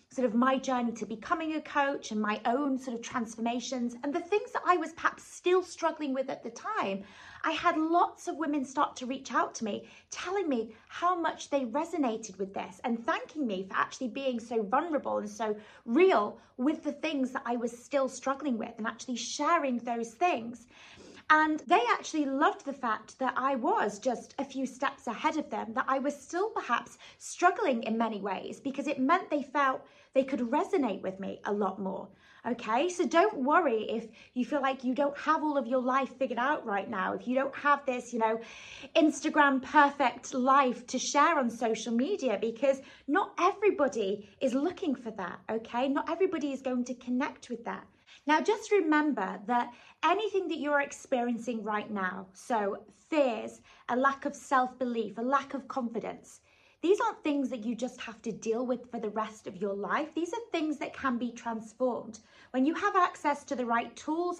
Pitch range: 235-310 Hz